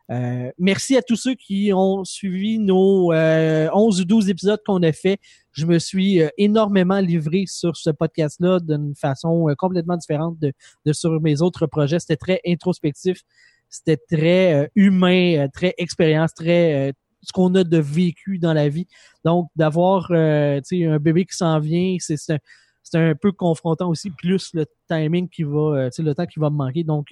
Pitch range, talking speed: 155-195 Hz, 195 wpm